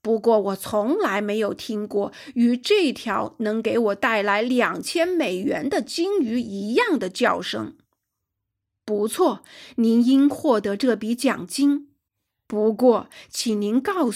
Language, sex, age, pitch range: Chinese, female, 50-69, 210-290 Hz